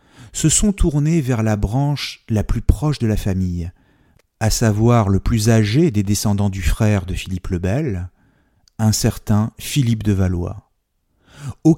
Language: French